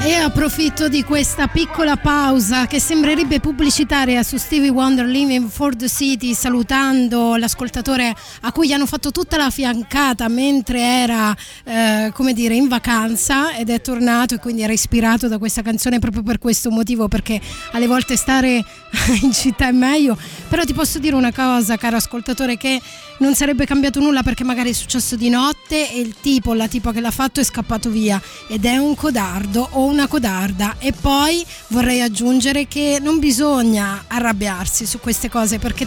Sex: female